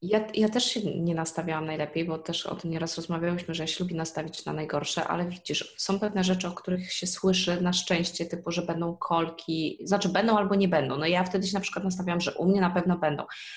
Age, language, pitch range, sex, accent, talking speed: 20-39, Polish, 170-195 Hz, female, native, 230 wpm